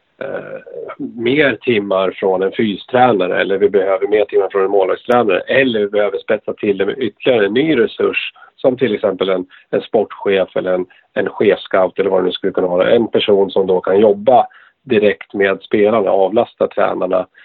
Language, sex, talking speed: Swedish, male, 180 wpm